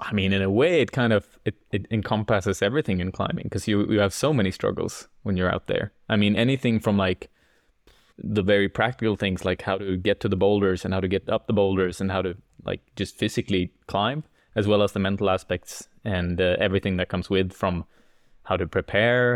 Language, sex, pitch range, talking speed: English, male, 95-120 Hz, 220 wpm